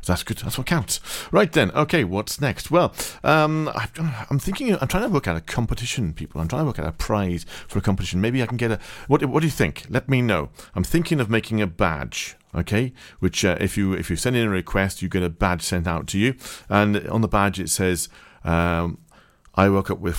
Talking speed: 245 wpm